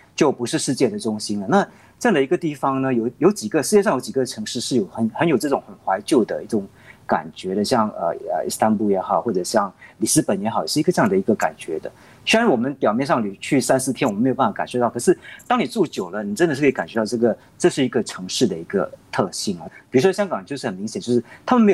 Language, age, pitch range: Chinese, 50-69, 110-175 Hz